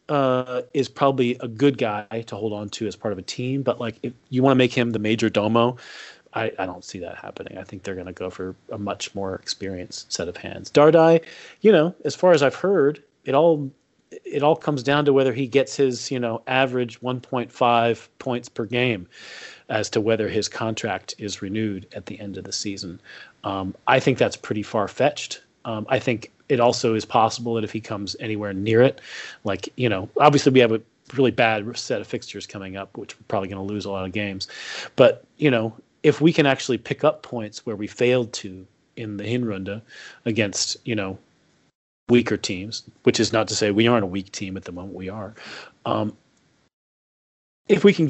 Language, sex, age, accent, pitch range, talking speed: English, male, 30-49, American, 105-130 Hz, 210 wpm